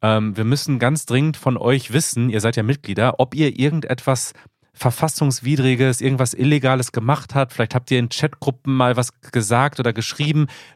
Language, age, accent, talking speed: German, 30-49, German, 160 wpm